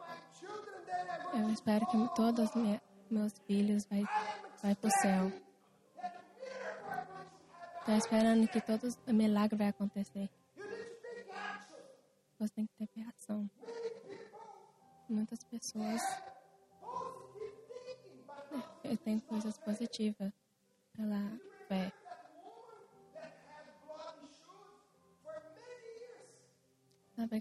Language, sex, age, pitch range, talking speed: English, female, 20-39, 210-275 Hz, 70 wpm